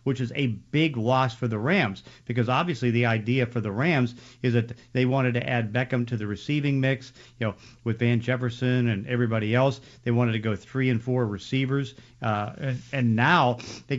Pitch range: 110-130 Hz